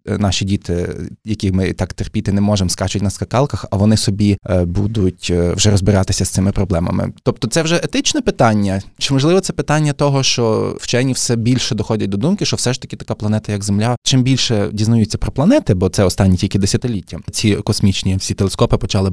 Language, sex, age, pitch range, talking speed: Ukrainian, male, 20-39, 100-130 Hz, 190 wpm